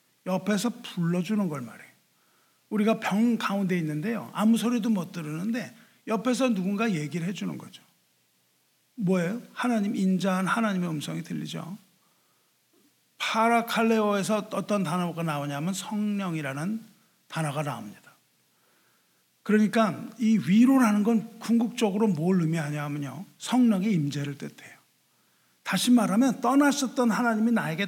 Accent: native